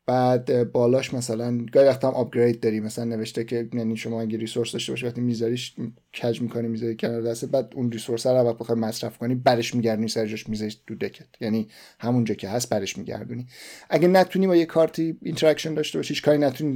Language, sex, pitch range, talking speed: Persian, male, 115-140 Hz, 190 wpm